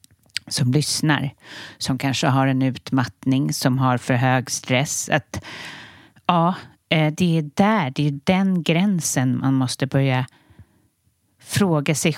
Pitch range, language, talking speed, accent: 130-160 Hz, English, 130 wpm, Swedish